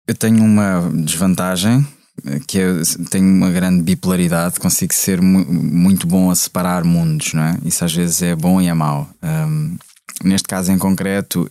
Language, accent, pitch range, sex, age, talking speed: Portuguese, Portuguese, 85-115 Hz, male, 20-39, 170 wpm